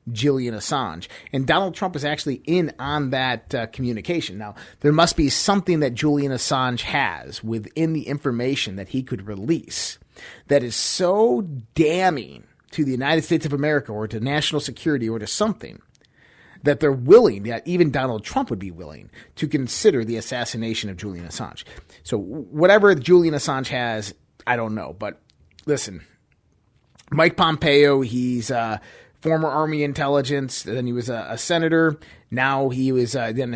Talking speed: 160 wpm